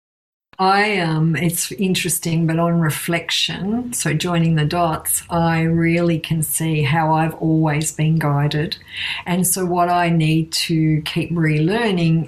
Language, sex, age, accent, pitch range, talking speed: English, female, 50-69, Australian, 160-180 Hz, 135 wpm